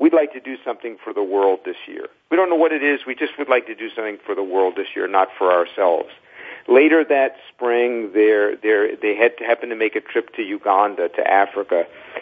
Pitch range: 105-155 Hz